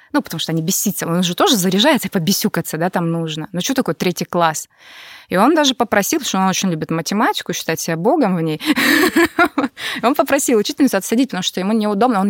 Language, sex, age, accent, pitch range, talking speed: Russian, female, 20-39, native, 165-235 Hz, 205 wpm